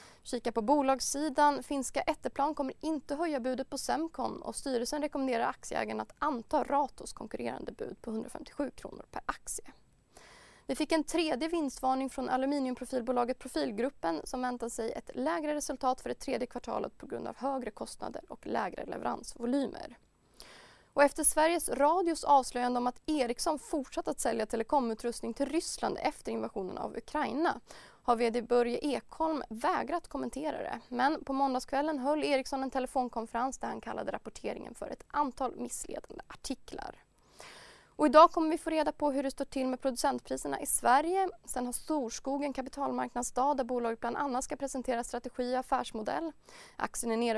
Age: 20-39